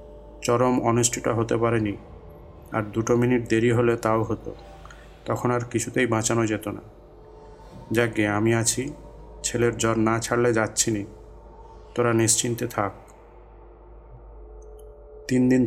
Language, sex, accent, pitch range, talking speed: English, male, Indian, 110-120 Hz, 125 wpm